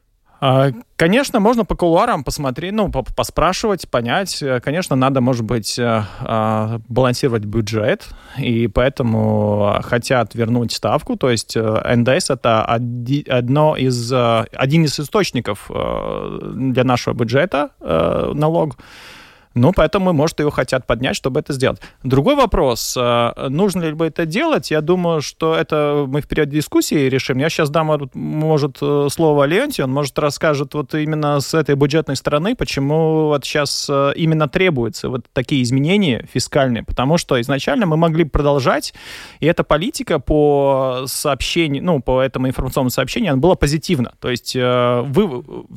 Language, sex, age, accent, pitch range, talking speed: Russian, male, 30-49, native, 125-160 Hz, 130 wpm